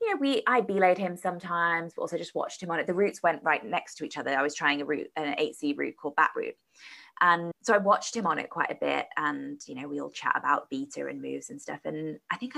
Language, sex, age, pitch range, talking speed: English, female, 20-39, 155-210 Hz, 275 wpm